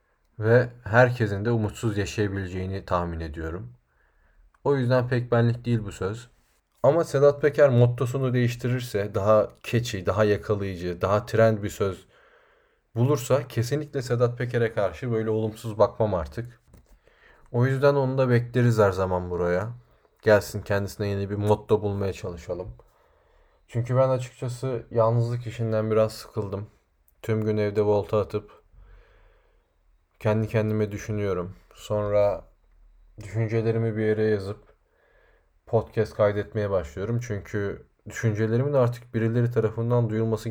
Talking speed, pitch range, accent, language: 120 wpm, 105-120 Hz, native, Turkish